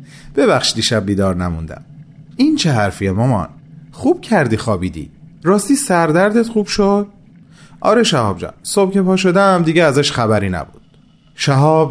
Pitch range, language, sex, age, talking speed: 125-195 Hz, Persian, male, 30-49, 135 wpm